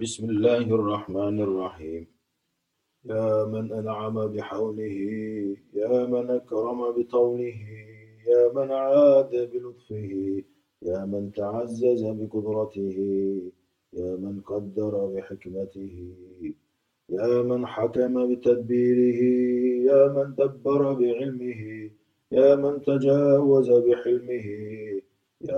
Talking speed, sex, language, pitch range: 85 wpm, male, Turkish, 100-125 Hz